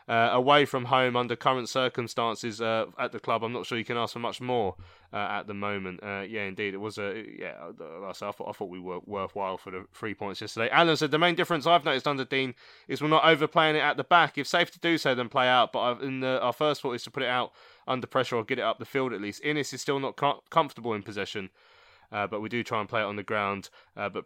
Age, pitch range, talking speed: 20-39, 105-135 Hz, 260 wpm